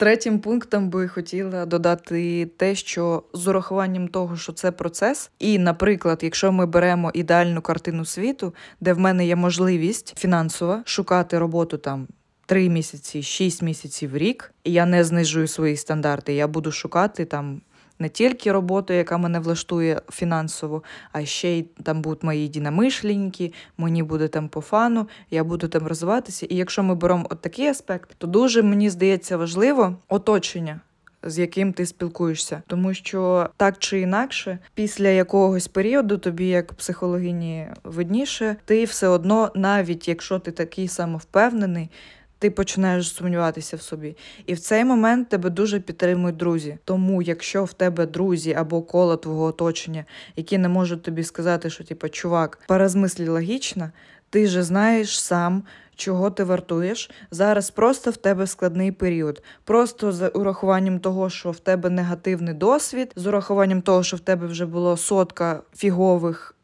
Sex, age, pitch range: female, 20-39, 170-195 Hz